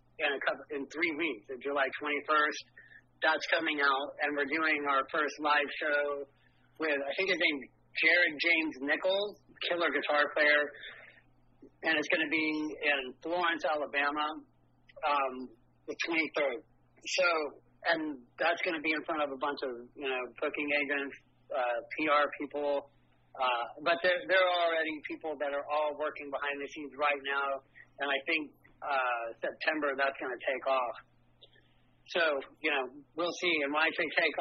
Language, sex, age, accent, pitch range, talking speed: English, male, 40-59, American, 135-155 Hz, 165 wpm